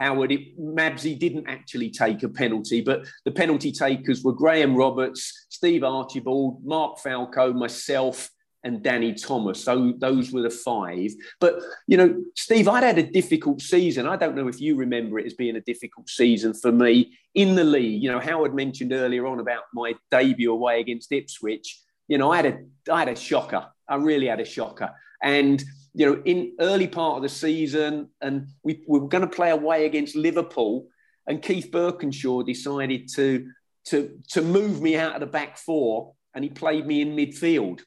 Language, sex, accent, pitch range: English, male, British, 130-165 Hz